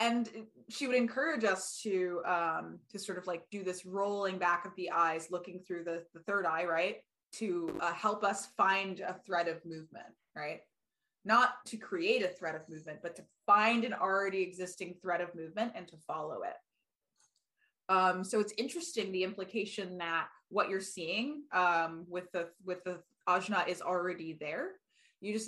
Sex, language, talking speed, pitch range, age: female, English, 180 wpm, 170-210 Hz, 20-39